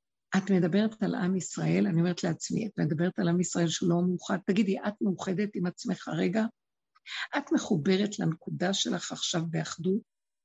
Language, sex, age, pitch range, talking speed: Hebrew, female, 60-79, 170-210 Hz, 155 wpm